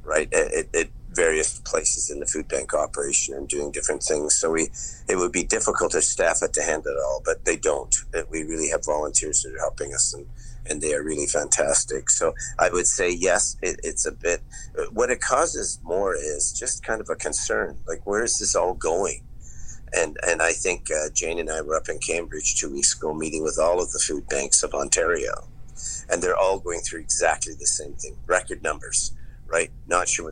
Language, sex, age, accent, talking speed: English, male, 50-69, American, 215 wpm